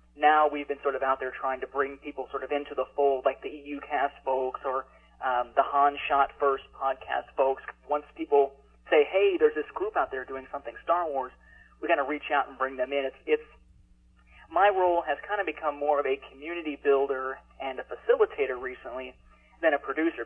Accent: American